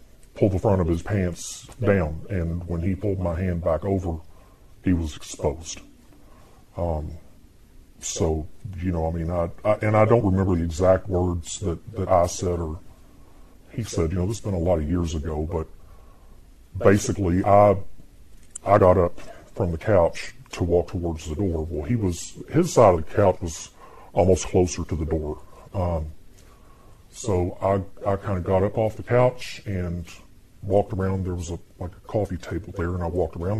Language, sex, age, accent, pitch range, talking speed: English, female, 40-59, American, 85-100 Hz, 185 wpm